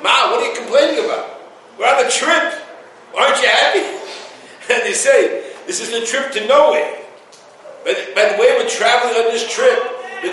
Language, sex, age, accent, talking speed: English, male, 60-79, American, 180 wpm